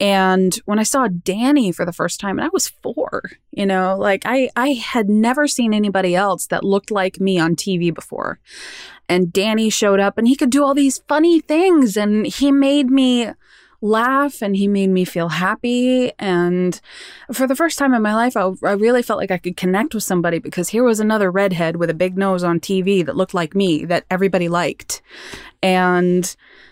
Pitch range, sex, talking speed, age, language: 180-230 Hz, female, 200 wpm, 20-39, English